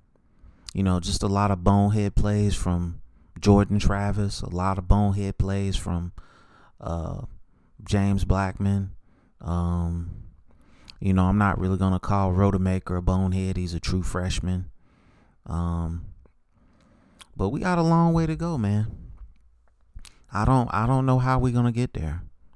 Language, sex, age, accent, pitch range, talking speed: English, male, 30-49, American, 85-105 Hz, 145 wpm